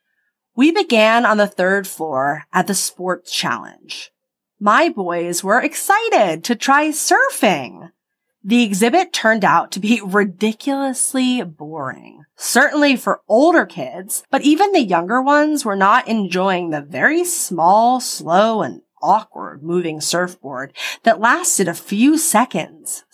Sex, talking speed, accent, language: female, 130 wpm, American, English